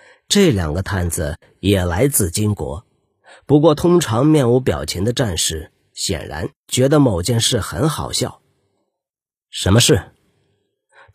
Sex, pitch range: male, 100-150 Hz